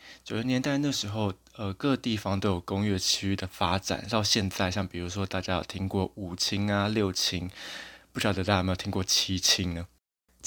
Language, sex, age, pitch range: Chinese, male, 20-39, 90-105 Hz